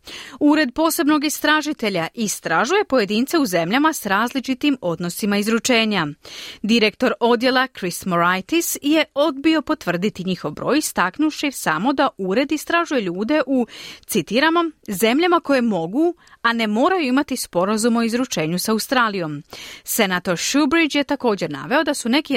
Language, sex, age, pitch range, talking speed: Croatian, female, 30-49, 205-300 Hz, 130 wpm